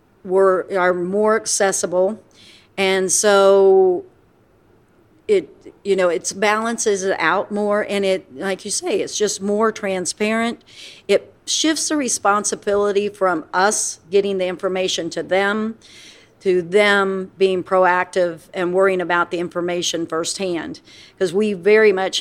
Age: 50-69